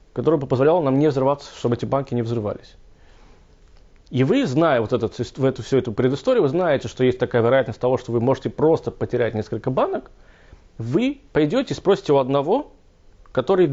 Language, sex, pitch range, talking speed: Russian, male, 115-165 Hz, 190 wpm